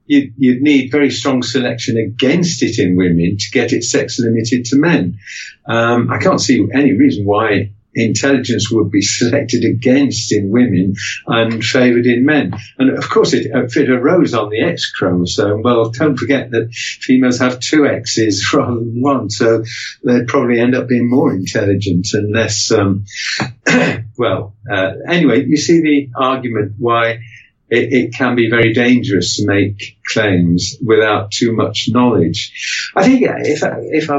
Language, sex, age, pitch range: English, male, 50-69, 105-130 Hz